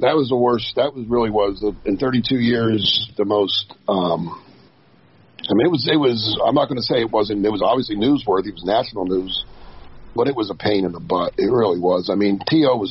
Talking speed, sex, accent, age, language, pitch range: 235 wpm, male, American, 50-69, English, 105-145 Hz